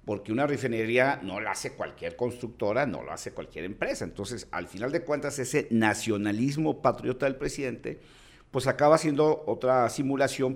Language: Spanish